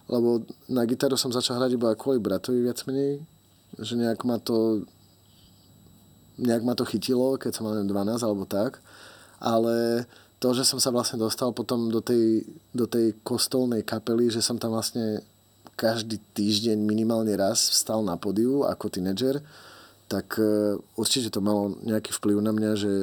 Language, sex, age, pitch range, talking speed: Slovak, male, 30-49, 105-125 Hz, 160 wpm